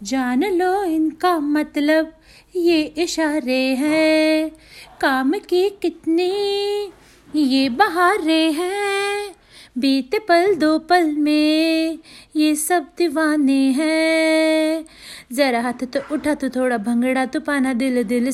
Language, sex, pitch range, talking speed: Hindi, female, 265-325 Hz, 110 wpm